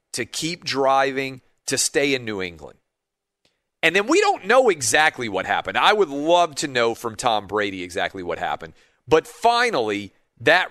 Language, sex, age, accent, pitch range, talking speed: English, male, 40-59, American, 115-160 Hz, 170 wpm